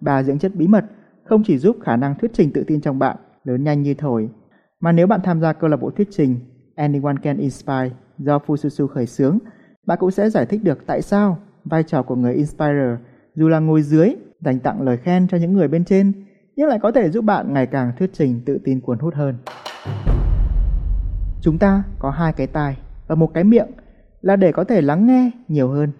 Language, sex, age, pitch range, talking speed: Vietnamese, male, 20-39, 140-195 Hz, 220 wpm